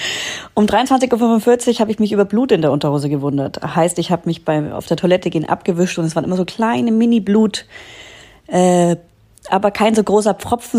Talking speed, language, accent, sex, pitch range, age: 195 wpm, German, German, female, 160-205 Hz, 30-49